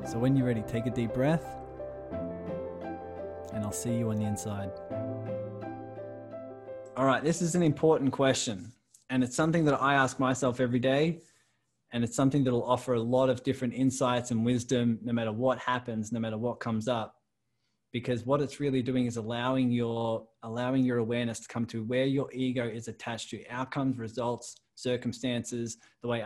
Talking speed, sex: 180 wpm, male